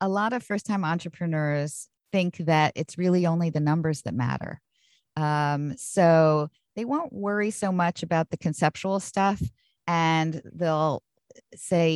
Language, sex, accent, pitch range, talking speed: English, female, American, 145-180 Hz, 140 wpm